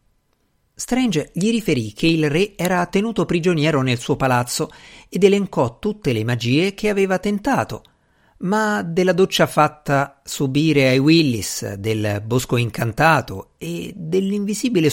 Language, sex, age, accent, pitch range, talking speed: Italian, male, 50-69, native, 120-175 Hz, 130 wpm